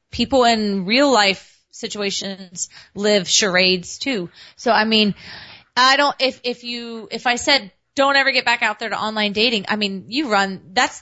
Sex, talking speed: female, 180 wpm